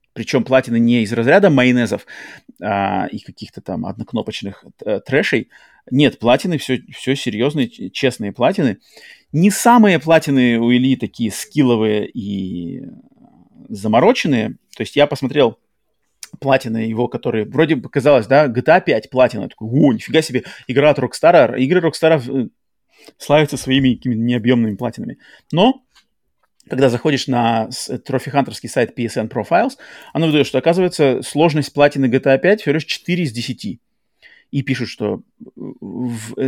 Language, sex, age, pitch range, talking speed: Russian, male, 30-49, 120-150 Hz, 130 wpm